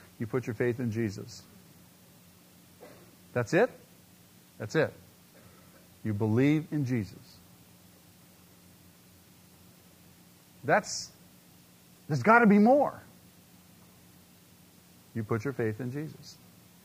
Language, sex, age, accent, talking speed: English, male, 50-69, American, 95 wpm